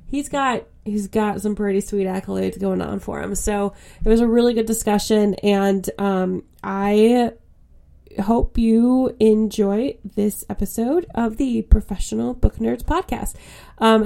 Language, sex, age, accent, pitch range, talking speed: English, female, 20-39, American, 200-225 Hz, 145 wpm